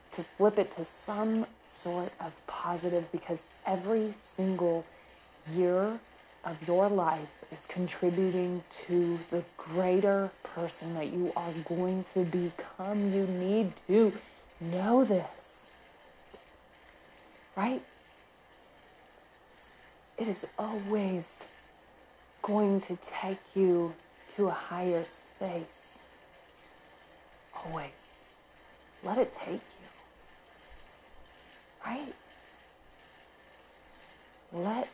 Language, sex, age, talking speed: English, female, 30-49, 90 wpm